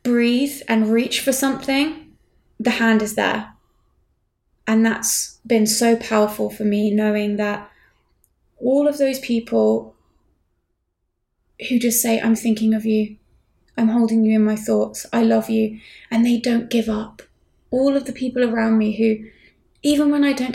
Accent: British